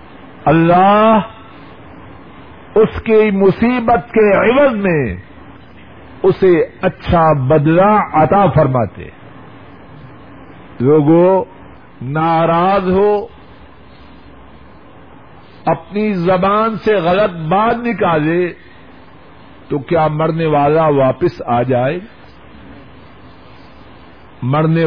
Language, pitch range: Urdu, 145-200 Hz